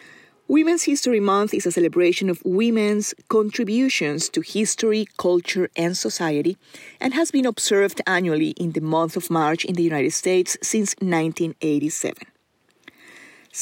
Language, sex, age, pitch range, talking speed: English, female, 30-49, 165-205 Hz, 130 wpm